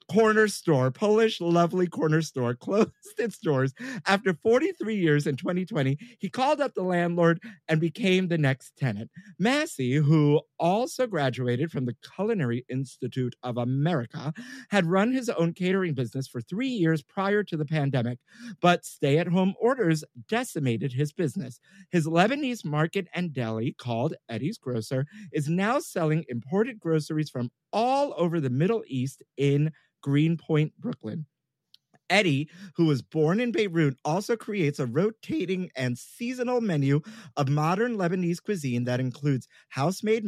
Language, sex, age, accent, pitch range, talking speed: English, male, 50-69, American, 140-200 Hz, 140 wpm